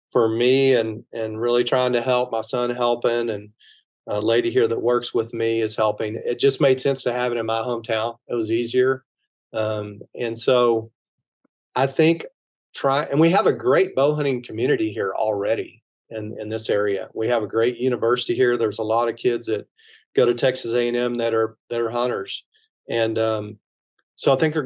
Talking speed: 195 wpm